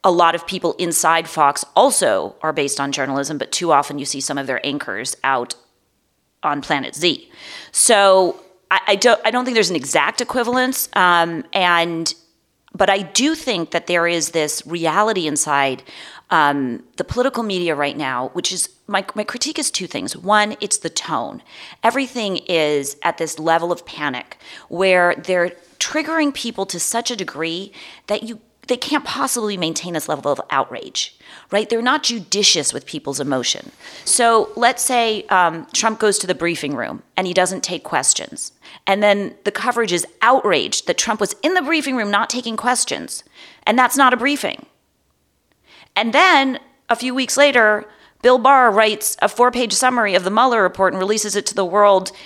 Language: English